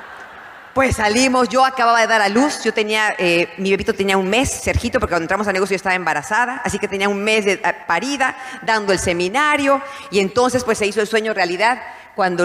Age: 40-59